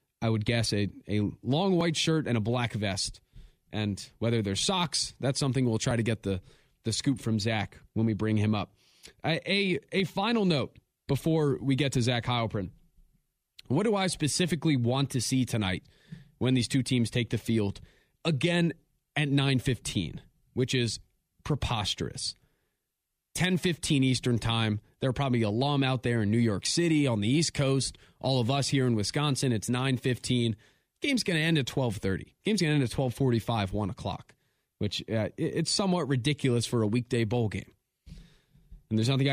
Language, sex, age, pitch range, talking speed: English, male, 20-39, 115-150 Hz, 185 wpm